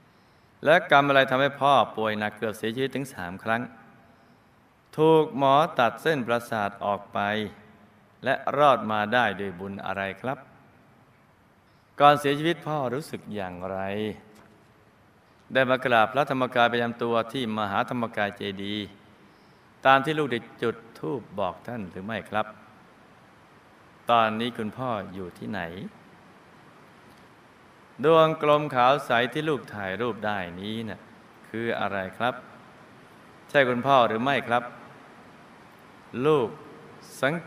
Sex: male